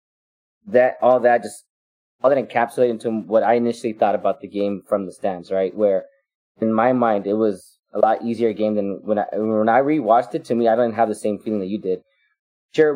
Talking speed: 225 wpm